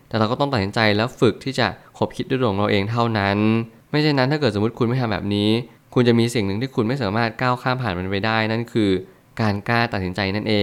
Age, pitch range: 20-39, 100-125 Hz